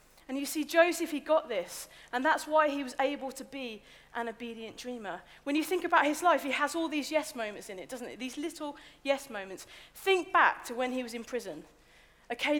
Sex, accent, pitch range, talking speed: female, British, 230-300 Hz, 225 wpm